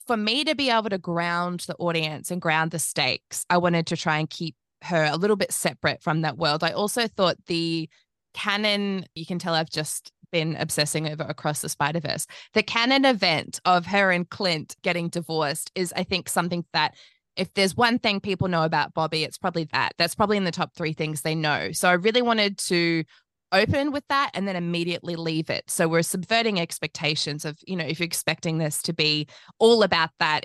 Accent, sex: Australian, female